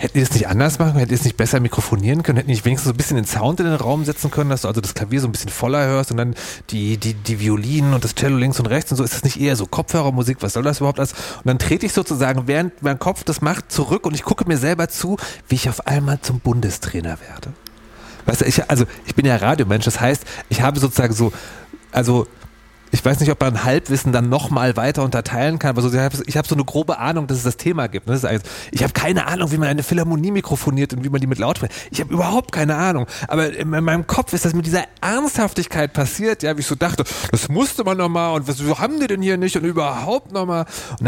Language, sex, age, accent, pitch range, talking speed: German, male, 30-49, German, 115-155 Hz, 255 wpm